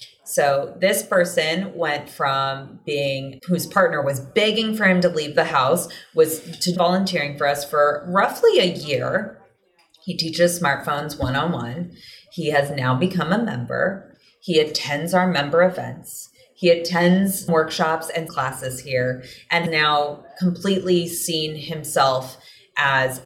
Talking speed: 135 wpm